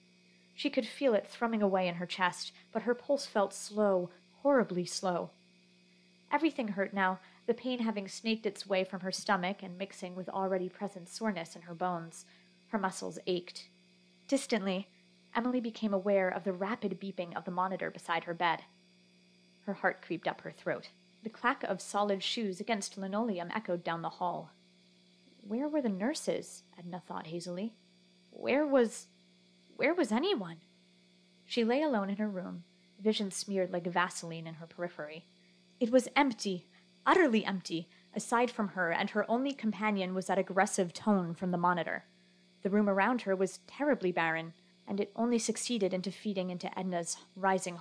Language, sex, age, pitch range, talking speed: English, female, 30-49, 170-215 Hz, 165 wpm